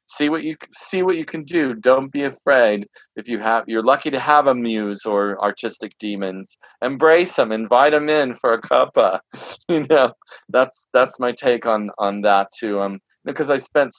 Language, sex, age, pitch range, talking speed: English, male, 40-59, 110-140 Hz, 195 wpm